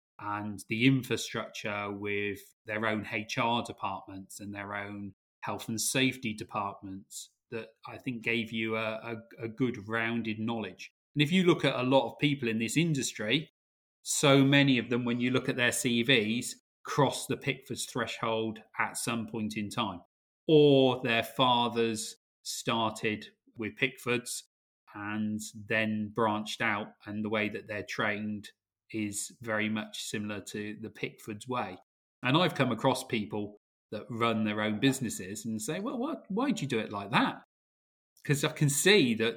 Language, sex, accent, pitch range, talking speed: English, male, British, 105-130 Hz, 160 wpm